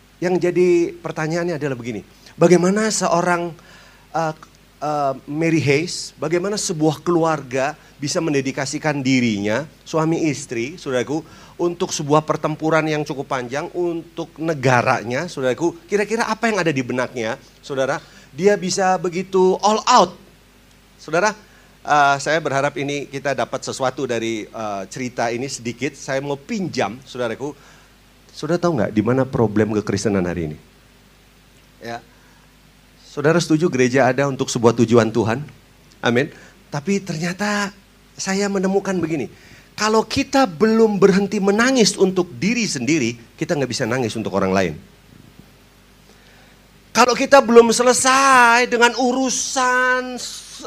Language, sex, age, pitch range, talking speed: Indonesian, male, 40-59, 130-195 Hz, 120 wpm